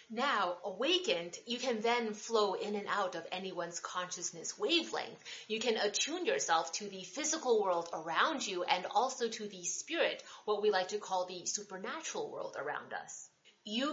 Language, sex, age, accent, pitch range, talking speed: English, female, 30-49, American, 185-270 Hz, 170 wpm